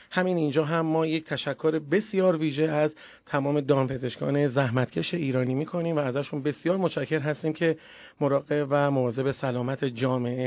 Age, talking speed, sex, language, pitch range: 40-59, 145 wpm, male, Persian, 130-170 Hz